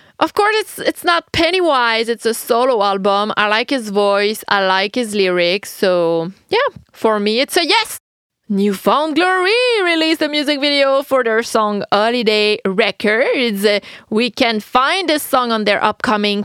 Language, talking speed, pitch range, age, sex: English, 160 wpm, 210-300 Hz, 30-49, female